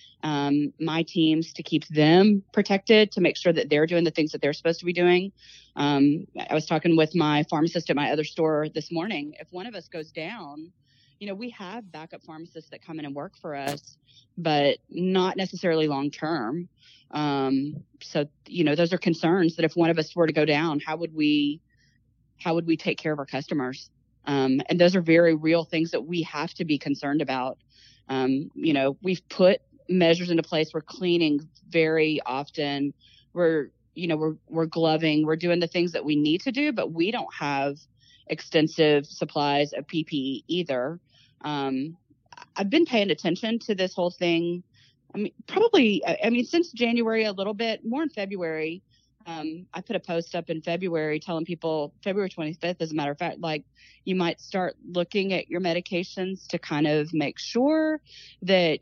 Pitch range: 150-175 Hz